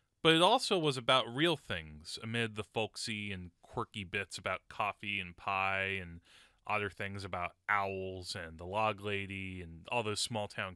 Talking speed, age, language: 175 wpm, 20-39, English